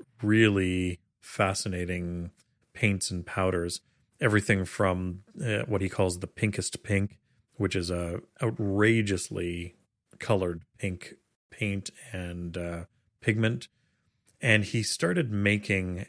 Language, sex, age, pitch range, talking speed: English, male, 30-49, 90-110 Hz, 105 wpm